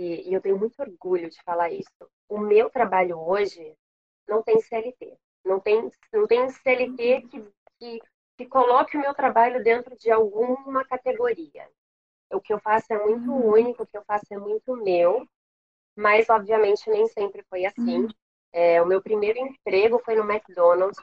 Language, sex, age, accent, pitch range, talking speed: Portuguese, female, 20-39, Brazilian, 185-235 Hz, 170 wpm